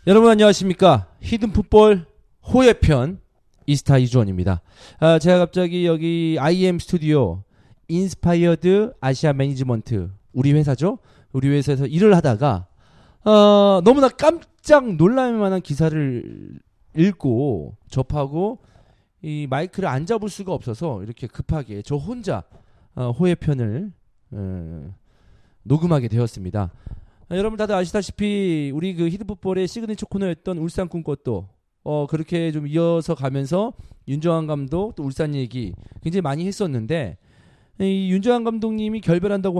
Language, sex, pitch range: Korean, male, 130-190 Hz